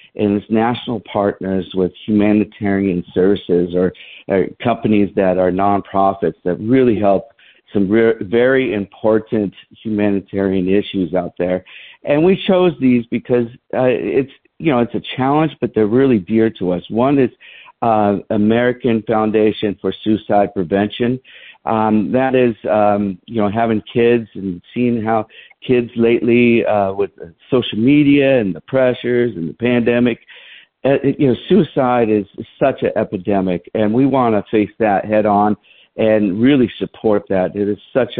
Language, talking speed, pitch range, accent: English, 150 wpm, 100-120 Hz, American